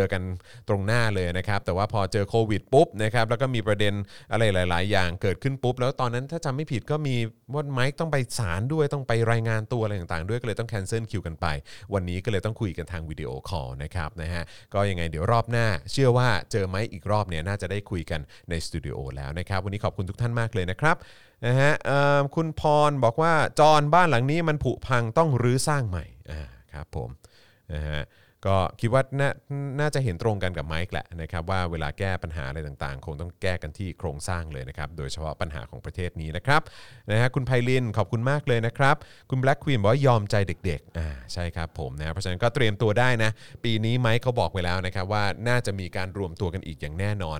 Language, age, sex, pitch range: Thai, 30-49, male, 90-125 Hz